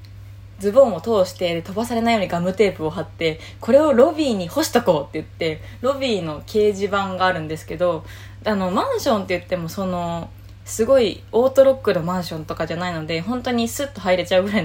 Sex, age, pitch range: female, 20-39, 160-220 Hz